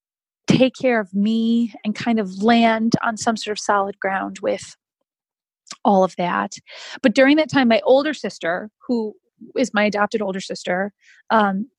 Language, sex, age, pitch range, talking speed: English, female, 30-49, 205-235 Hz, 165 wpm